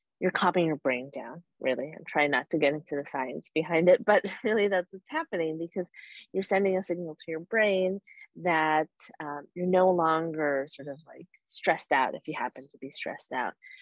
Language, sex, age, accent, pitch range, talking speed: English, female, 30-49, American, 155-190 Hz, 200 wpm